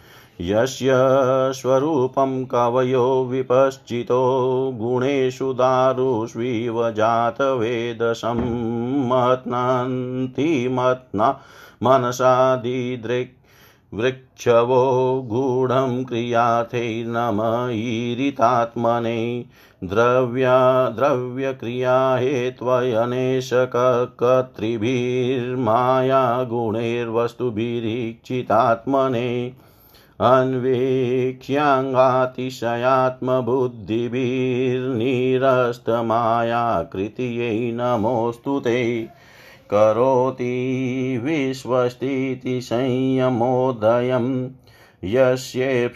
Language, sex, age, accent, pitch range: Hindi, male, 50-69, native, 115-130 Hz